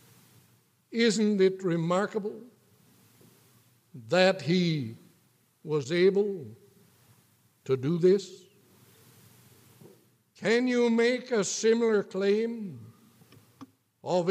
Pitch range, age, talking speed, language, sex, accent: 155-220 Hz, 60-79, 70 wpm, English, male, American